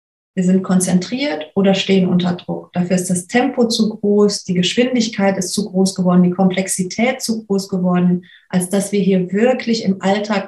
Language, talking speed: German, 180 wpm